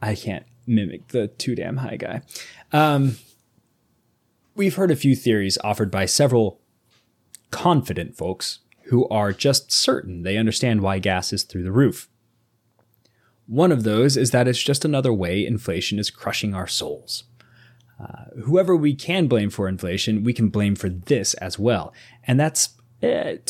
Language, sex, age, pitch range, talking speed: English, male, 20-39, 105-130 Hz, 160 wpm